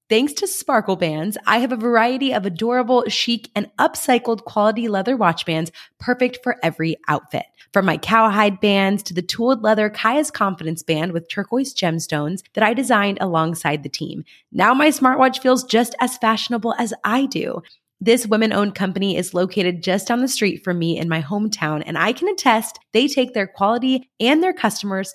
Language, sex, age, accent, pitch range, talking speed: English, female, 20-39, American, 170-245 Hz, 180 wpm